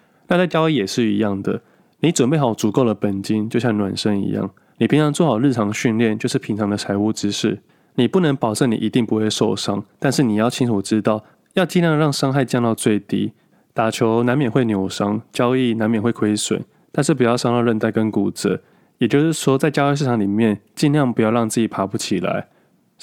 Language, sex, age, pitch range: Chinese, male, 20-39, 105-135 Hz